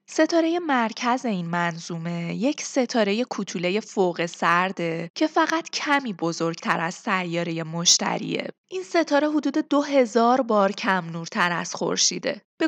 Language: Persian